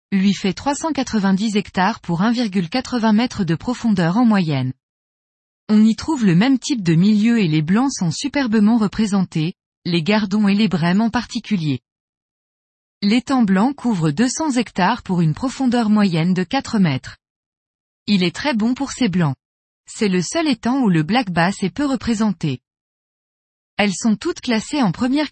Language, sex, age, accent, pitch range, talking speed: French, female, 20-39, French, 180-245 Hz, 160 wpm